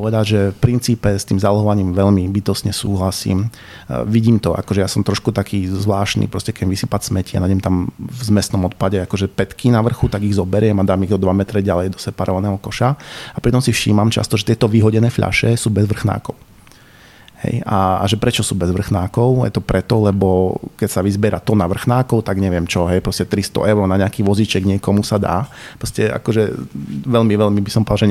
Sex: male